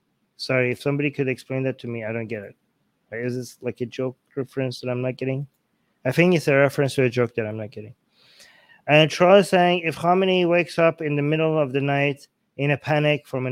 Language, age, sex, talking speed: English, 20-39, male, 235 wpm